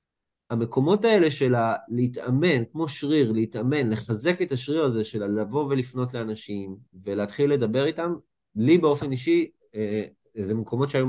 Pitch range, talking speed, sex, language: 105-145 Hz, 130 wpm, male, Hebrew